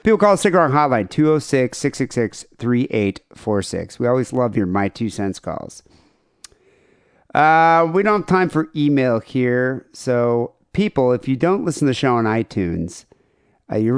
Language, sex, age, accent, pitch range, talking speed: English, male, 50-69, American, 110-150 Hz, 155 wpm